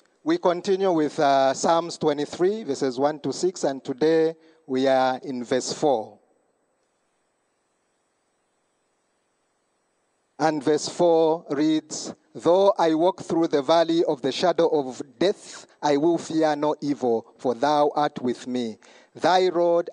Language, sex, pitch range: English, male, 140-170 Hz